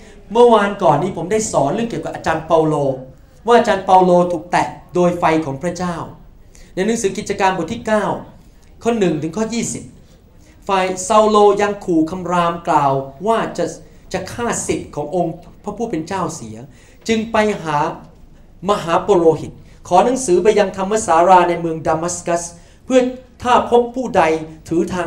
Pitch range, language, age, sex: 165-210 Hz, Thai, 30-49, male